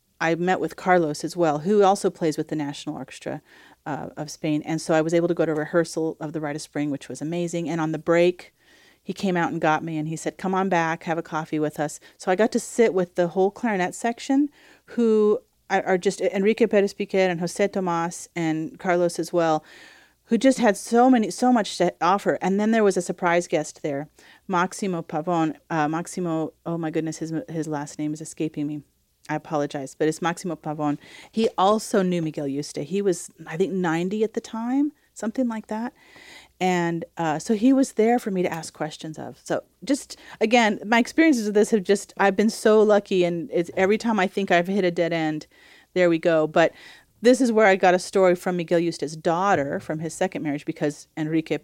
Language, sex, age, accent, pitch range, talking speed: English, female, 30-49, American, 160-200 Hz, 215 wpm